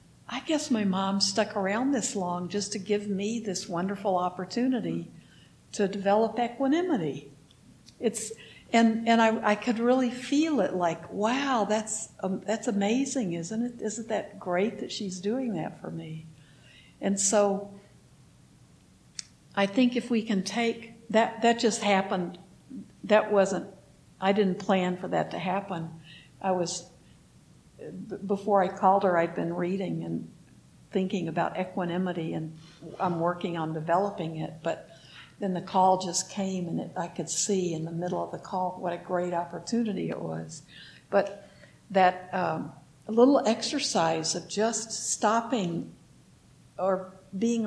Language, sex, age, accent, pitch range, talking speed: English, female, 60-79, American, 175-220 Hz, 150 wpm